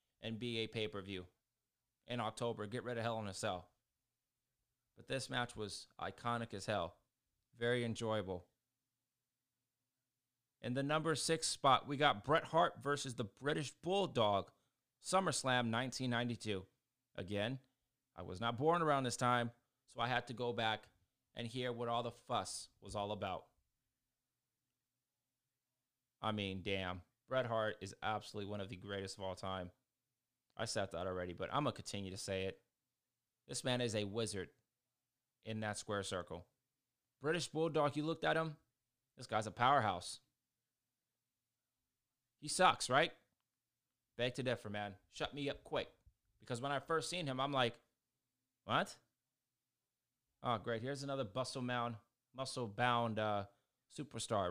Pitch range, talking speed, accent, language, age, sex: 110-130 Hz, 145 wpm, American, English, 20-39, male